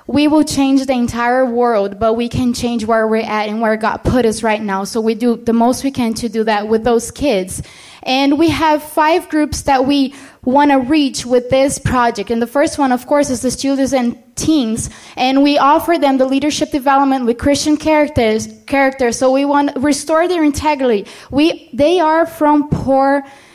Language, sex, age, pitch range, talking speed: English, female, 20-39, 235-280 Hz, 205 wpm